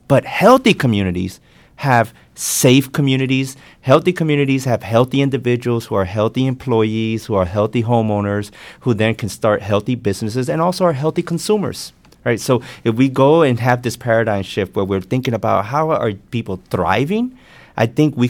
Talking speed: 165 wpm